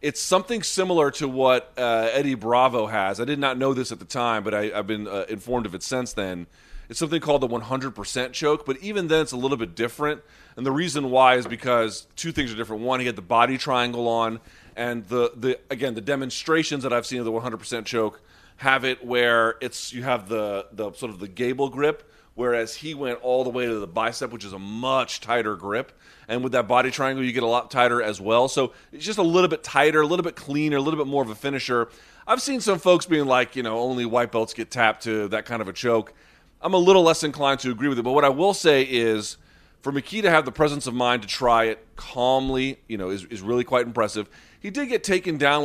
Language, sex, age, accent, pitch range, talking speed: English, male, 30-49, American, 115-140 Hz, 245 wpm